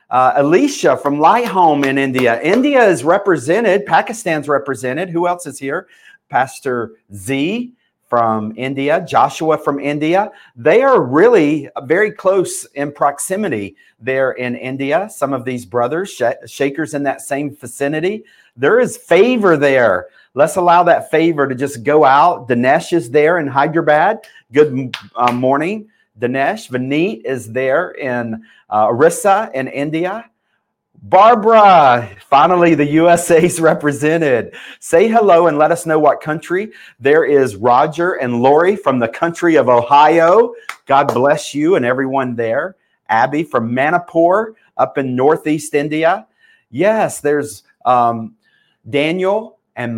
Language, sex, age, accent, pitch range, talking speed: English, male, 40-59, American, 130-175 Hz, 135 wpm